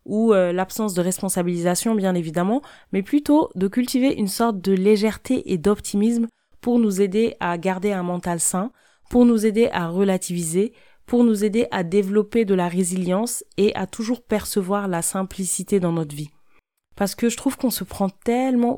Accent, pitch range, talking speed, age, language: French, 175-215 Hz, 175 wpm, 20-39, French